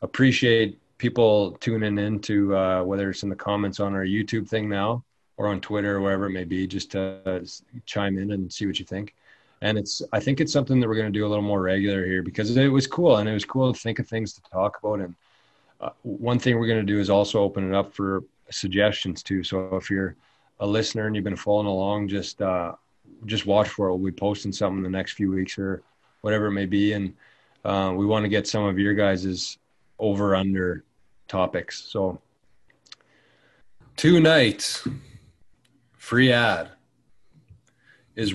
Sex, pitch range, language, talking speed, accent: male, 100-120 Hz, English, 205 wpm, American